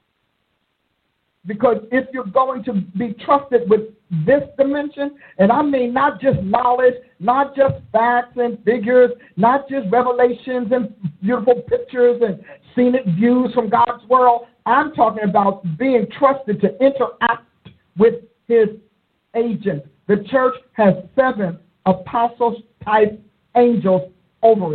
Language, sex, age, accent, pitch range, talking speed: English, male, 50-69, American, 200-250 Hz, 120 wpm